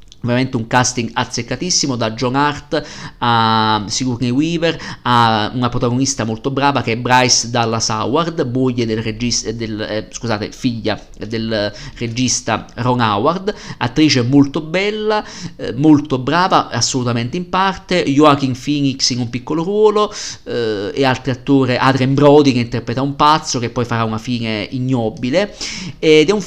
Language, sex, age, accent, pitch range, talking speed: Italian, male, 50-69, native, 120-145 Hz, 140 wpm